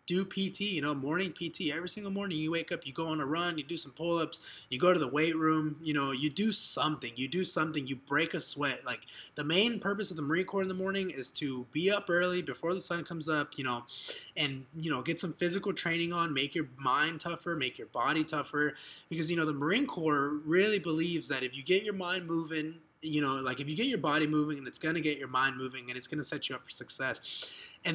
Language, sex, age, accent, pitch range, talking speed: English, male, 20-39, American, 145-185 Hz, 255 wpm